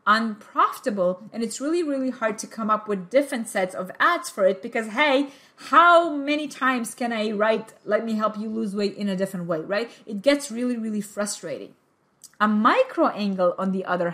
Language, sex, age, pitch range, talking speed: English, female, 30-49, 205-280 Hz, 195 wpm